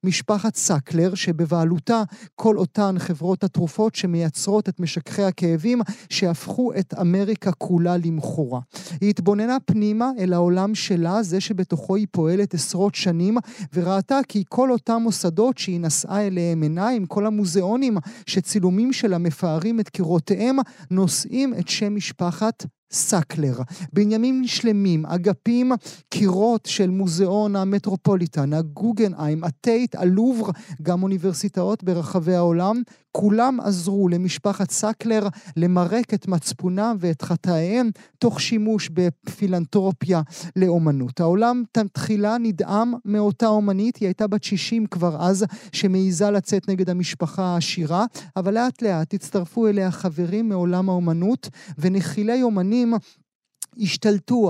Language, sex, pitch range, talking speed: Hebrew, male, 175-215 Hz, 115 wpm